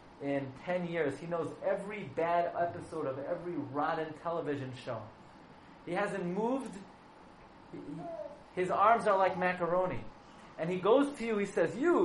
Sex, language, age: male, English, 30-49